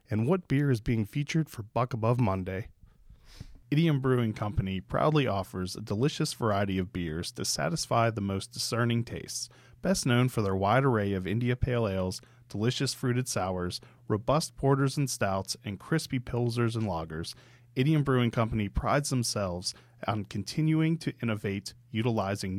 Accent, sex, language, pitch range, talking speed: American, male, English, 105-130 Hz, 155 wpm